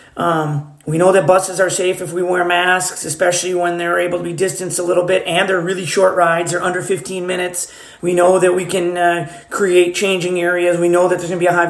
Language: English